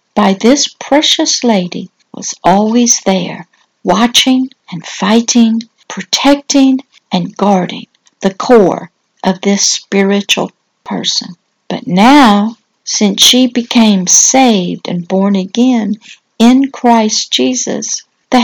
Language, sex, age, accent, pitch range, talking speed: English, female, 60-79, American, 200-250 Hz, 105 wpm